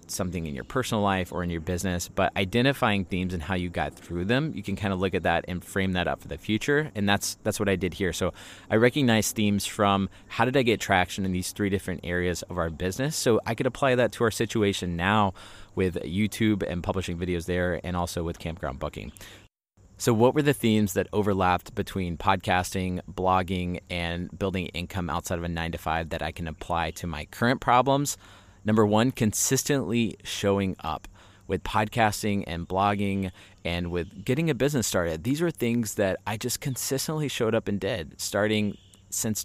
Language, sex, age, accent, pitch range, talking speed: English, male, 30-49, American, 90-105 Hz, 200 wpm